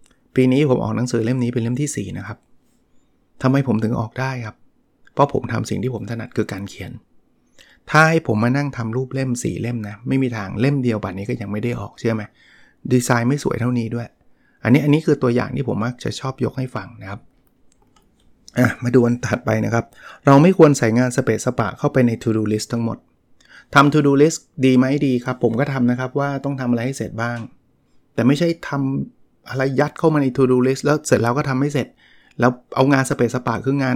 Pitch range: 120-140 Hz